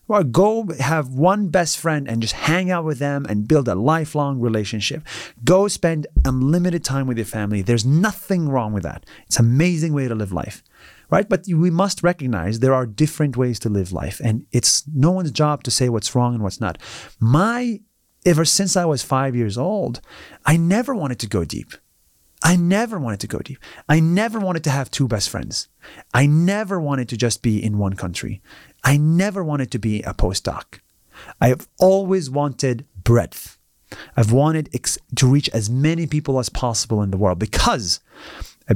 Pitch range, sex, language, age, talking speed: 120-175 Hz, male, English, 30-49, 190 wpm